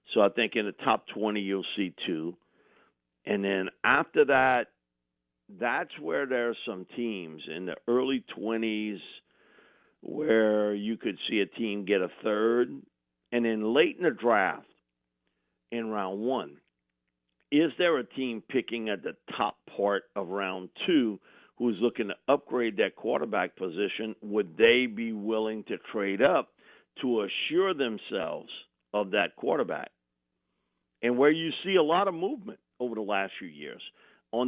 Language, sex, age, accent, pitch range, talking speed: English, male, 50-69, American, 95-120 Hz, 155 wpm